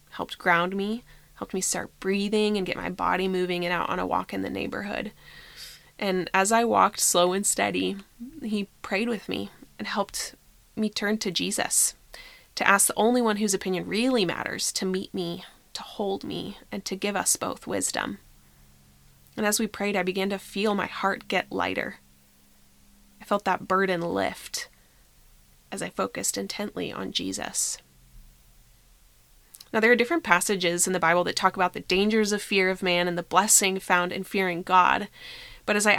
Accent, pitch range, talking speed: American, 175-205 Hz, 180 wpm